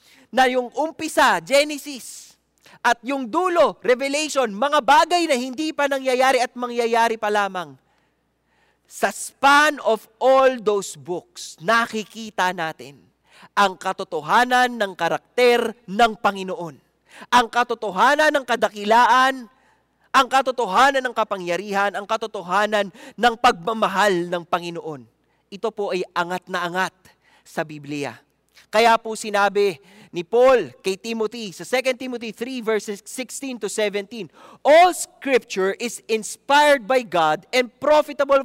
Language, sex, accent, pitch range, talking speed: English, male, Filipino, 205-285 Hz, 120 wpm